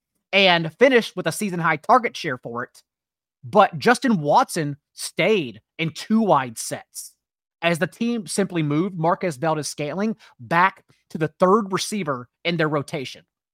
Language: English